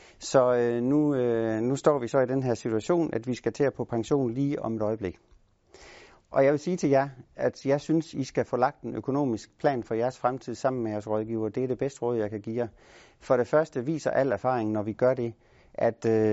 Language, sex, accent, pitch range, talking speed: Danish, male, native, 110-130 Hz, 235 wpm